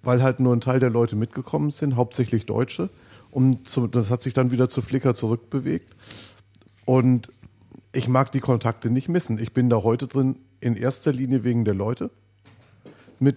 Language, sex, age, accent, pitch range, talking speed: German, male, 40-59, German, 110-130 Hz, 175 wpm